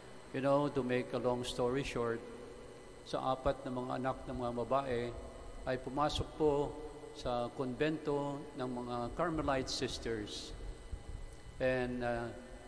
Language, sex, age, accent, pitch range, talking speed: English, male, 50-69, Filipino, 115-135 Hz, 125 wpm